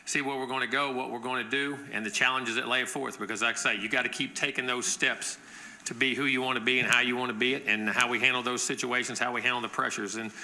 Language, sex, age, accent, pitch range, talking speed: English, male, 40-59, American, 120-130 Hz, 315 wpm